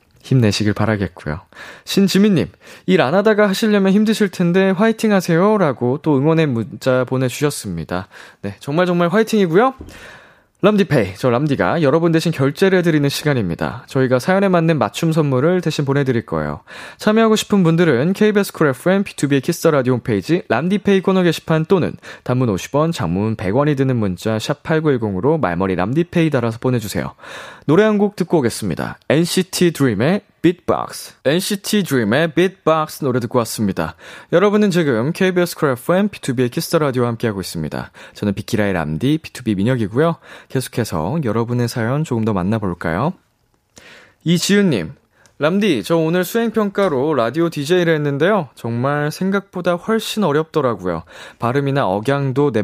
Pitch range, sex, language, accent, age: 105-175 Hz, male, Korean, native, 20-39